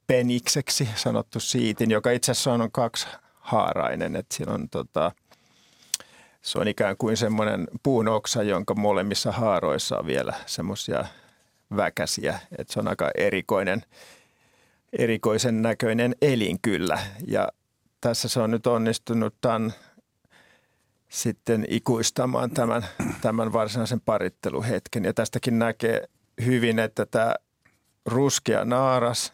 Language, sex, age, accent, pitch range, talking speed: Finnish, male, 50-69, native, 110-125 Hz, 105 wpm